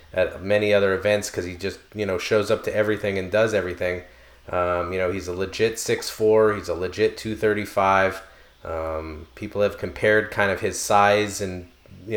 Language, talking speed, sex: English, 195 wpm, male